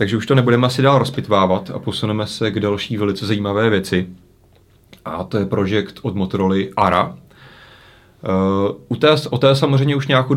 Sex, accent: male, native